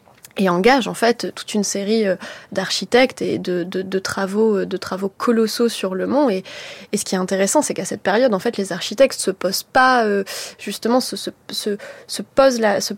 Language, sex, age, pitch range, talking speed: French, female, 20-39, 205-255 Hz, 210 wpm